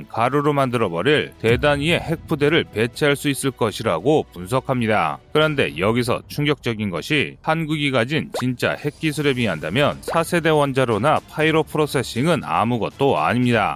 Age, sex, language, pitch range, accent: 30-49, male, Korean, 125-160 Hz, native